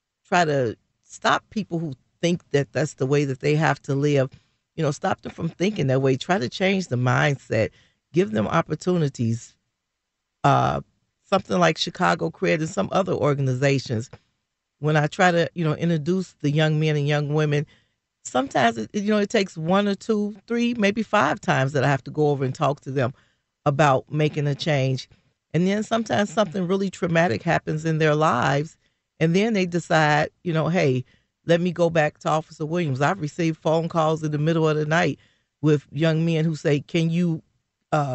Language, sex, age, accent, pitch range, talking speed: English, female, 40-59, American, 140-170 Hz, 190 wpm